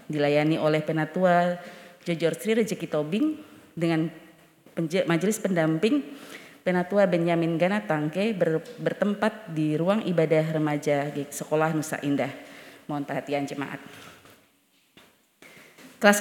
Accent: native